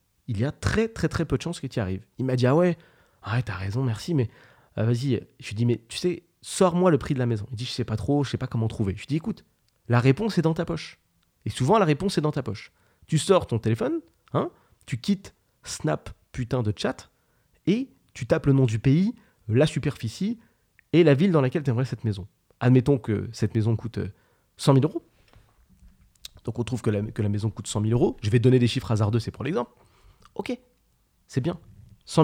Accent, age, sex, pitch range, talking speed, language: French, 30-49, male, 115-155 Hz, 245 wpm, French